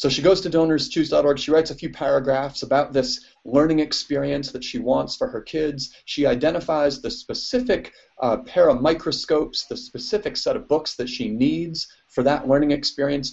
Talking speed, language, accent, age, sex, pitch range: 180 wpm, English, American, 40-59, male, 135-180 Hz